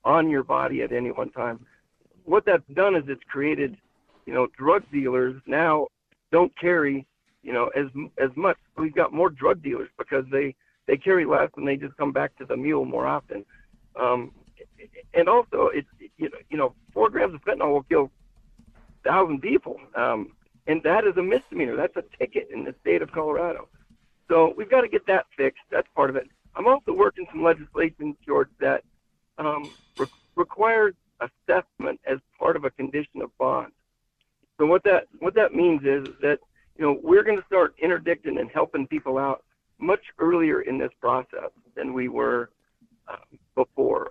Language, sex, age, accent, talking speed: English, male, 60-79, American, 180 wpm